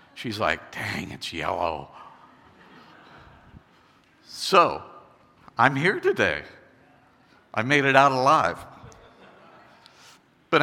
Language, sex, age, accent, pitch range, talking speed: English, male, 60-79, American, 110-150 Hz, 85 wpm